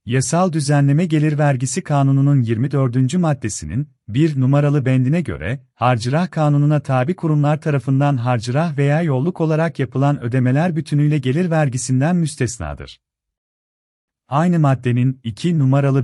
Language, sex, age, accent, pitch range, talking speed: Turkish, male, 40-59, native, 125-150 Hz, 110 wpm